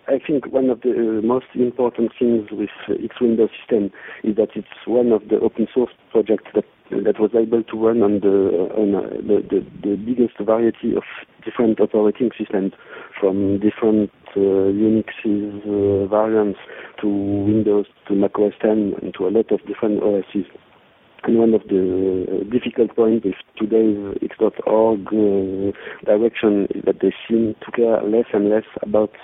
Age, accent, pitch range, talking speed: 50-69, French, 100-110 Hz, 170 wpm